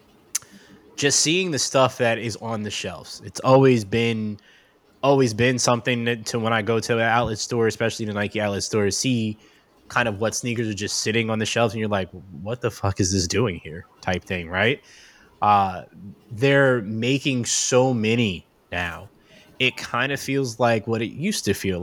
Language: Finnish